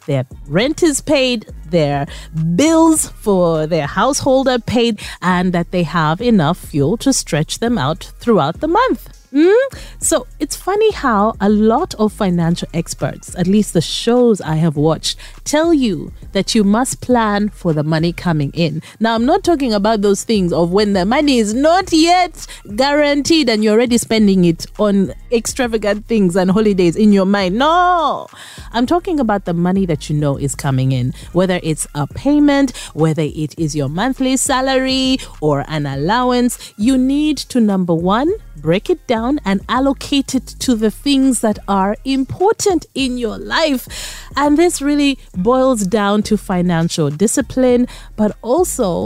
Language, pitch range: English, 170-265 Hz